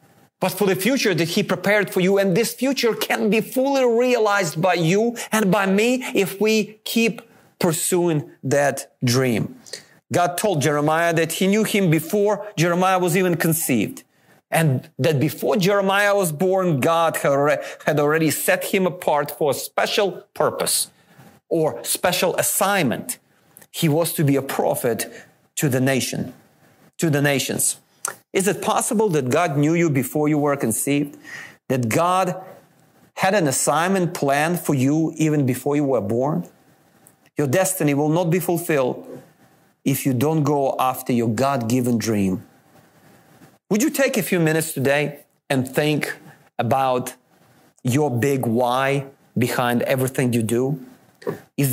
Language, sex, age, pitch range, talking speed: English, male, 30-49, 140-190 Hz, 145 wpm